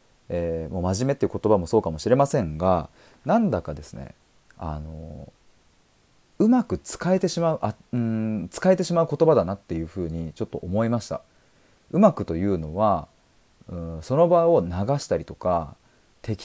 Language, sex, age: Japanese, male, 30-49